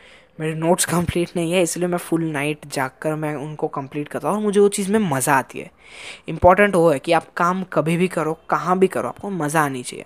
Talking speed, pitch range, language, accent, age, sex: 235 wpm, 145-180 Hz, Hindi, native, 20-39, female